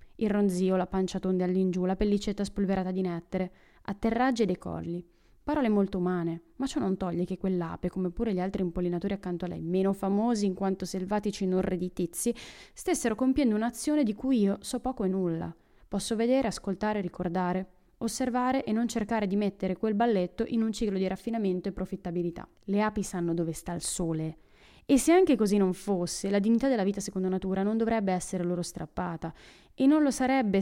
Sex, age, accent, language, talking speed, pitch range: female, 20-39, native, Italian, 185 wpm, 185-225 Hz